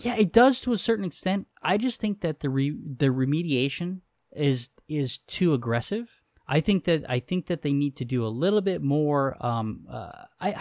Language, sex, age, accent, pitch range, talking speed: English, male, 20-39, American, 125-165 Hz, 200 wpm